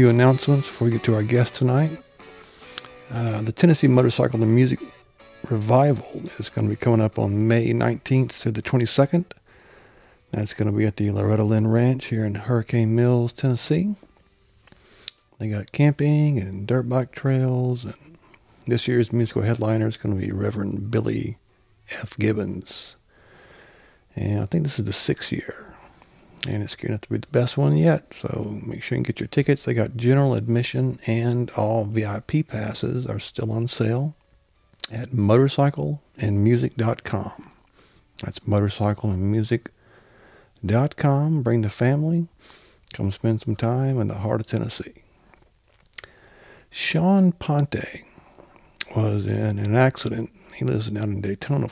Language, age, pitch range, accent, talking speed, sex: English, 50-69, 105-130 Hz, American, 145 wpm, male